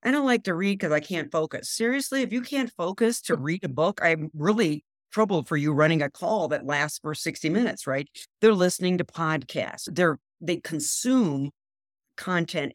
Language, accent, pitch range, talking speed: English, American, 140-180 Hz, 190 wpm